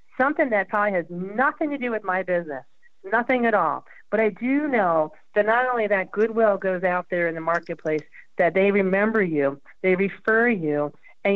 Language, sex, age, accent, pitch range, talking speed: English, female, 40-59, American, 170-210 Hz, 190 wpm